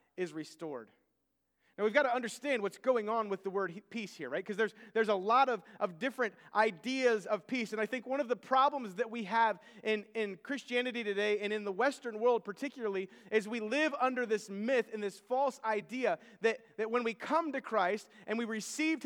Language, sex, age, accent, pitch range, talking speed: English, male, 30-49, American, 210-265 Hz, 210 wpm